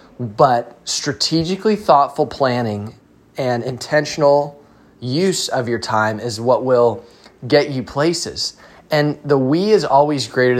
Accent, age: American, 20-39